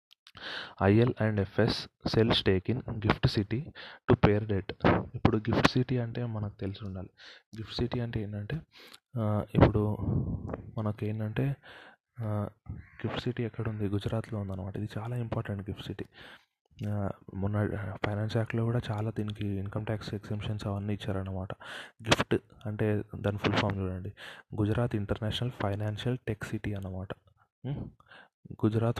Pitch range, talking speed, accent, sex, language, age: 100-115 Hz, 125 wpm, native, male, Telugu, 20-39